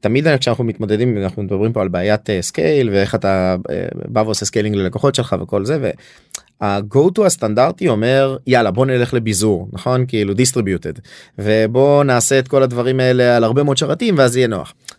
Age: 30-49